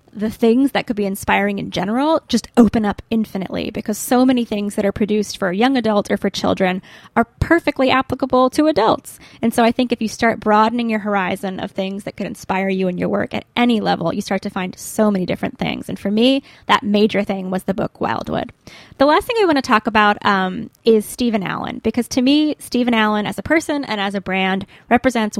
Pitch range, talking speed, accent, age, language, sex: 195-240 Hz, 225 wpm, American, 10-29, English, female